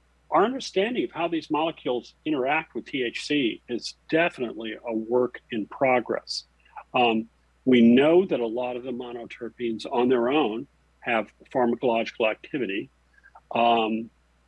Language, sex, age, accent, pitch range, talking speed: English, male, 50-69, American, 105-150 Hz, 130 wpm